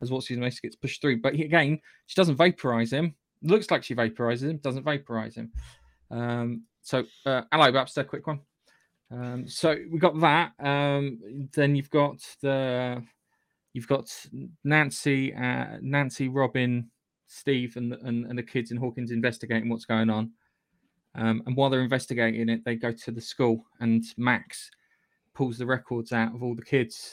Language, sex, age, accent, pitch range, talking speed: English, male, 20-39, British, 115-140 Hz, 175 wpm